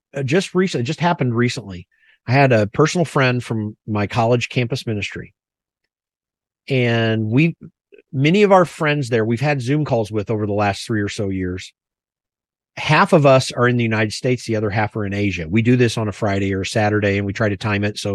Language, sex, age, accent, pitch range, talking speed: English, male, 40-59, American, 100-130 Hz, 210 wpm